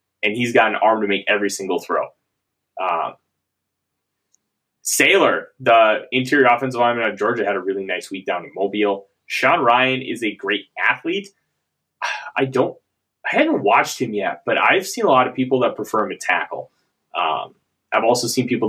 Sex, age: male, 20-39